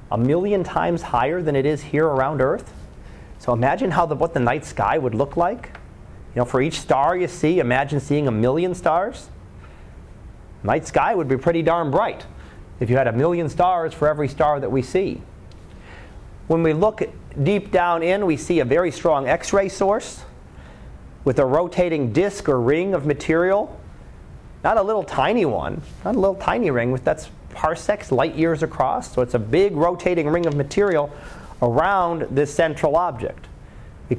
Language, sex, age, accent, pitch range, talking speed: English, male, 30-49, American, 125-170 Hz, 180 wpm